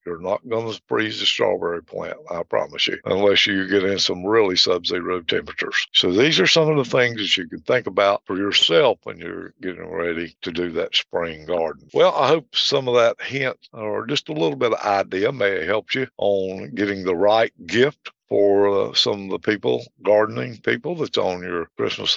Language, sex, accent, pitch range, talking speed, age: English, male, American, 100-140 Hz, 210 wpm, 60-79